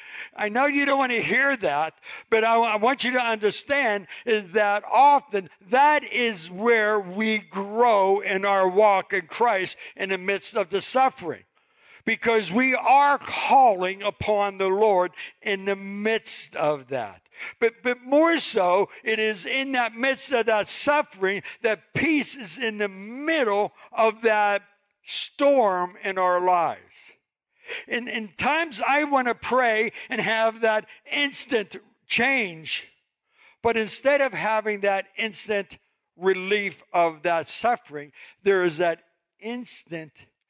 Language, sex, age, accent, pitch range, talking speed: English, male, 60-79, American, 180-235 Hz, 140 wpm